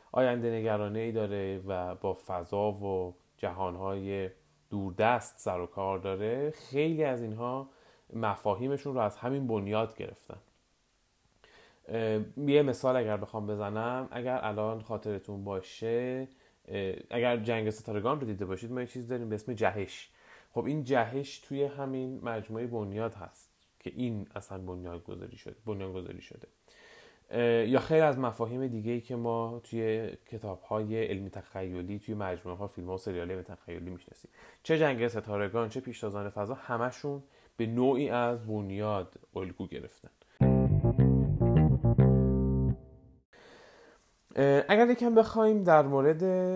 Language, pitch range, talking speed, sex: Persian, 100-130 Hz, 130 wpm, male